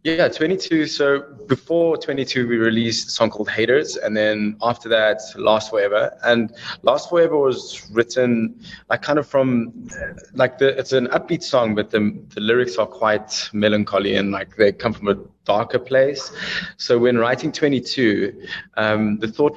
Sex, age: male, 20-39